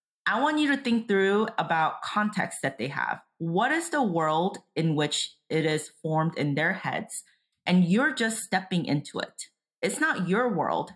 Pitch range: 155-220 Hz